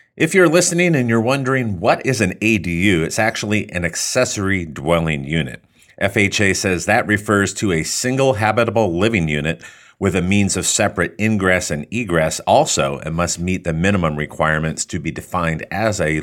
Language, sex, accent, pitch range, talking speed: English, male, American, 80-100 Hz, 170 wpm